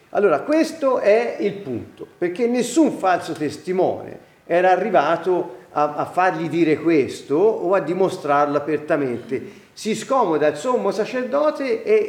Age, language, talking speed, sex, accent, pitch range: 40-59, Italian, 130 wpm, male, native, 160-265 Hz